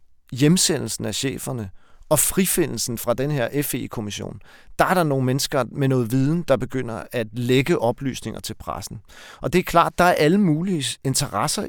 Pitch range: 120-170 Hz